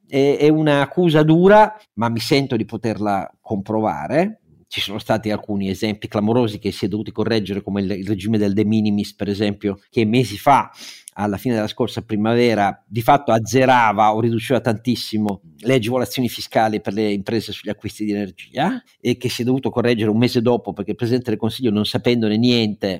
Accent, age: native, 50-69